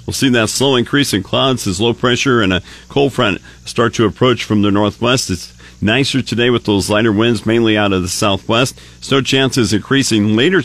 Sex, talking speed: male, 205 wpm